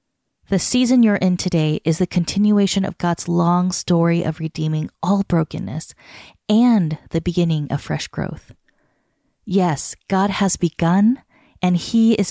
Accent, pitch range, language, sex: American, 165-200 Hz, English, female